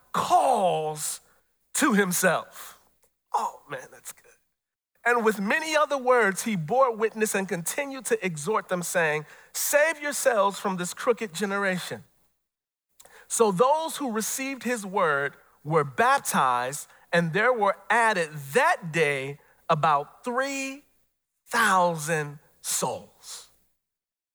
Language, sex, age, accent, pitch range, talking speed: English, male, 40-59, American, 170-235 Hz, 110 wpm